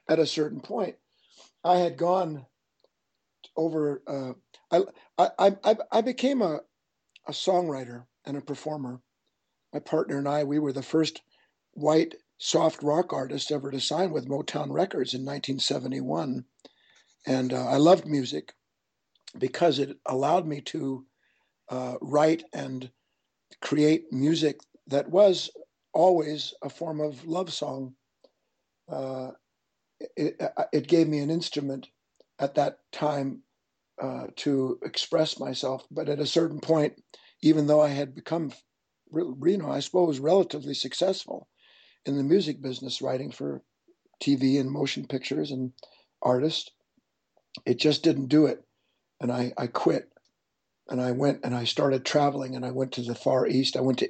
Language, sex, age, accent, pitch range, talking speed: English, male, 50-69, American, 130-160 Hz, 145 wpm